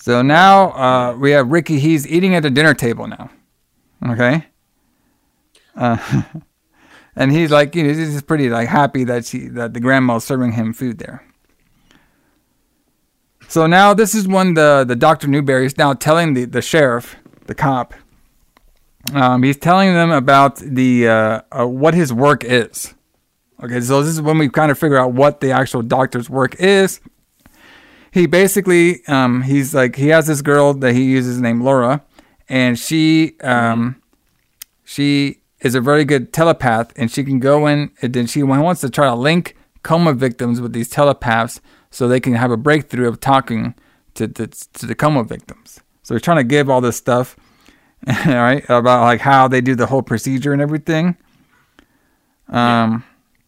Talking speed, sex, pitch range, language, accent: 170 wpm, male, 125-155 Hz, English, American